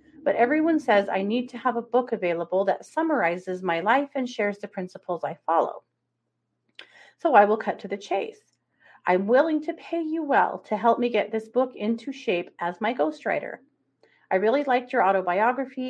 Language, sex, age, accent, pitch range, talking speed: English, female, 40-59, American, 185-250 Hz, 185 wpm